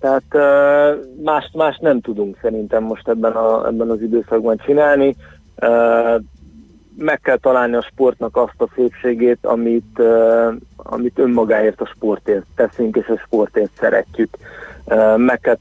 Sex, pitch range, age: male, 105-130 Hz, 30-49